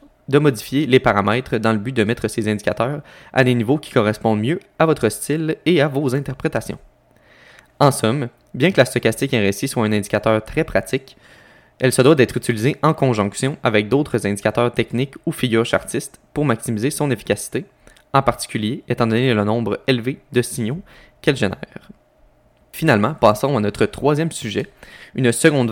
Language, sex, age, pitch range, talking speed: French, male, 20-39, 115-145 Hz, 170 wpm